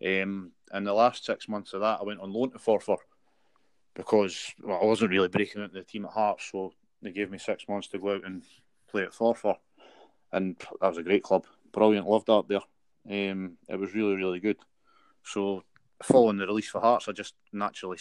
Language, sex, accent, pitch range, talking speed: English, male, British, 95-110 Hz, 215 wpm